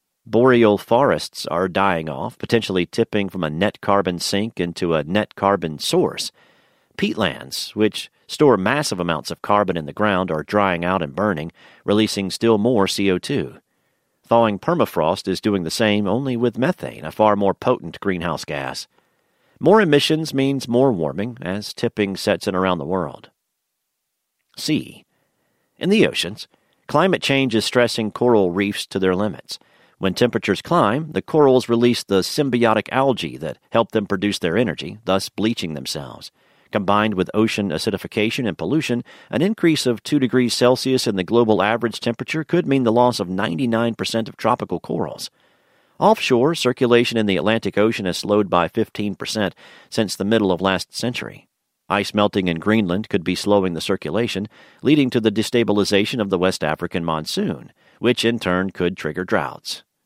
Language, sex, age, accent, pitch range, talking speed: English, male, 40-59, American, 95-120 Hz, 160 wpm